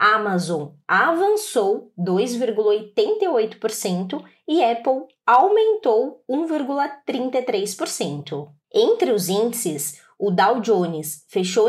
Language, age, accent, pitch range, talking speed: Portuguese, 20-39, Brazilian, 185-295 Hz, 70 wpm